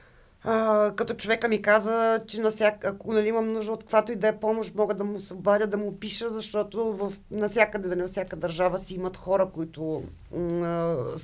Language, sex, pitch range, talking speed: Bulgarian, female, 180-225 Hz, 190 wpm